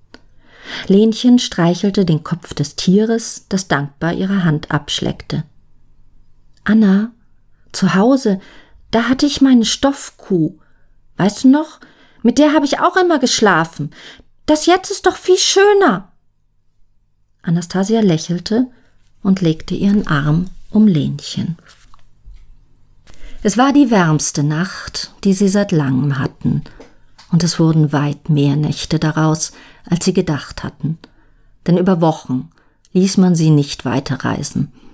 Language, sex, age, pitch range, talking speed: German, female, 40-59, 145-205 Hz, 125 wpm